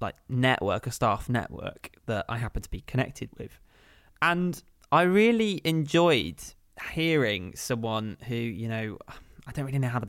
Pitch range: 115-145 Hz